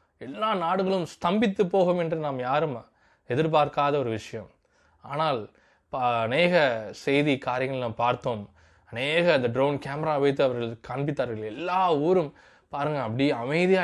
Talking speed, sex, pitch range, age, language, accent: 120 wpm, male, 125-170 Hz, 20-39, Tamil, native